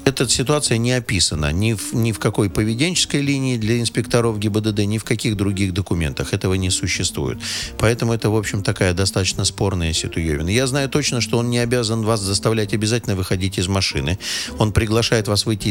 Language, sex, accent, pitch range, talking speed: Russian, male, native, 95-115 Hz, 175 wpm